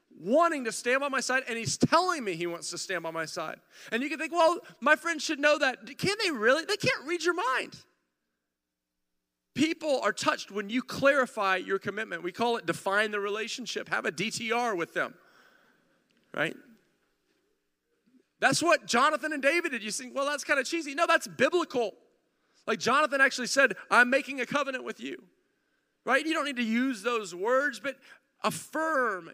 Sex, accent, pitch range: male, American, 185-270 Hz